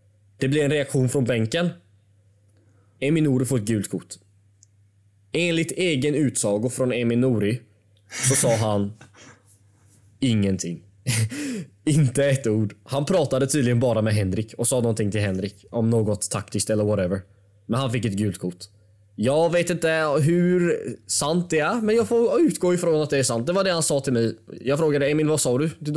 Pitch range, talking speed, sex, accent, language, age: 100-140 Hz, 170 wpm, male, Swedish, English, 20-39